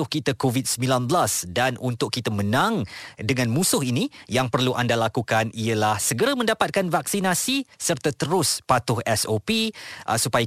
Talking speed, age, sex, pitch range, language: 130 wpm, 20-39, male, 120-165 Hz, Malay